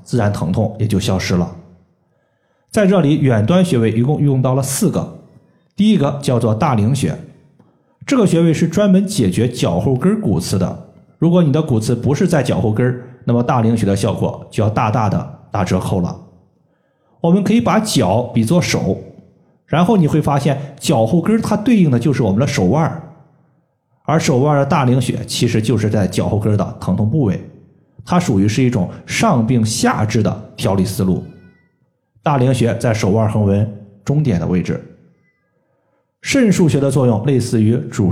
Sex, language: male, Chinese